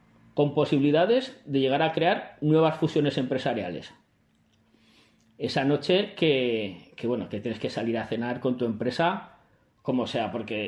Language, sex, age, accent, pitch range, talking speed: Spanish, male, 30-49, Spanish, 115-175 Hz, 145 wpm